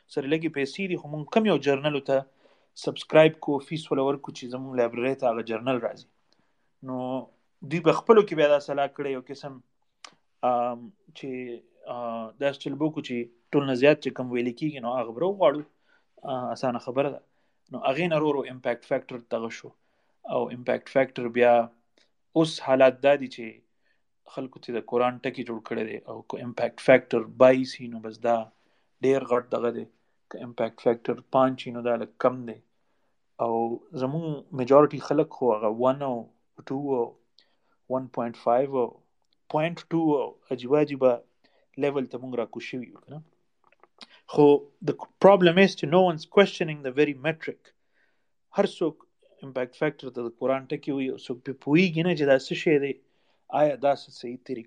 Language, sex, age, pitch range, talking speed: Urdu, male, 30-49, 125-150 Hz, 100 wpm